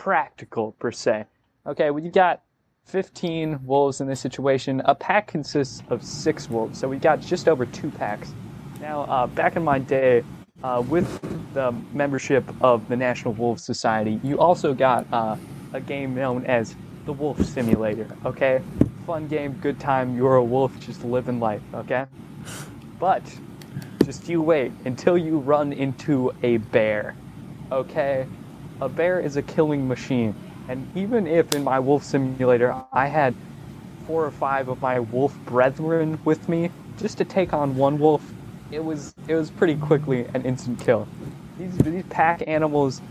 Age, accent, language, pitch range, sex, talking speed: 20-39, American, English, 125-160 Hz, male, 165 wpm